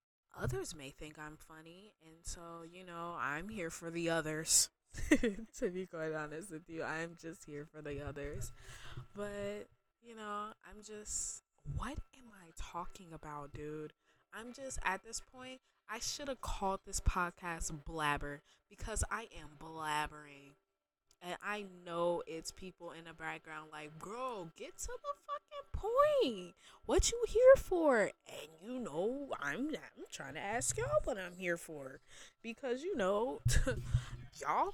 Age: 20-39